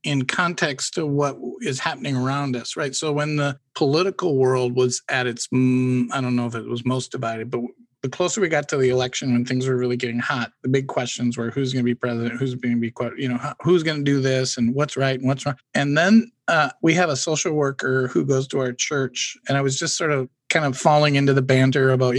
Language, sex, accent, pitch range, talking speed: English, male, American, 125-155 Hz, 240 wpm